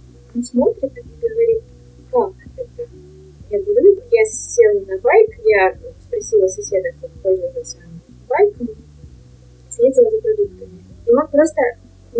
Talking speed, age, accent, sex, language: 125 wpm, 20-39, native, female, Russian